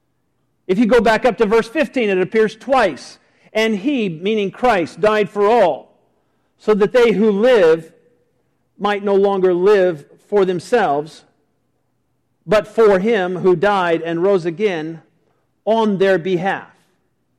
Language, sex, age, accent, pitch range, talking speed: English, male, 50-69, American, 155-225 Hz, 140 wpm